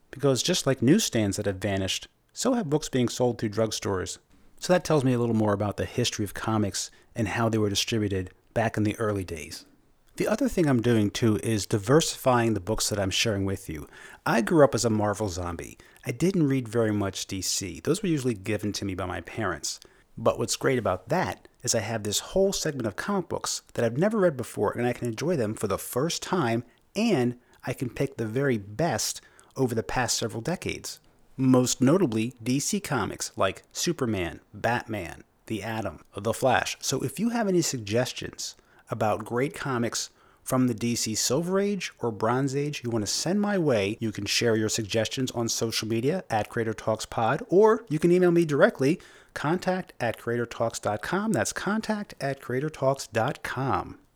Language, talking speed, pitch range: English, 190 wpm, 110-140 Hz